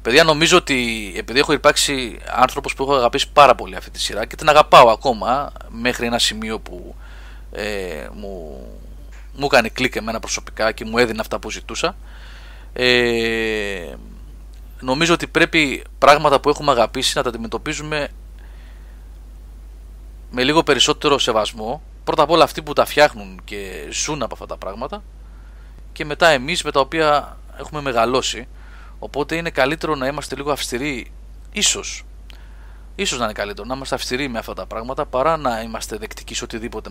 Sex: male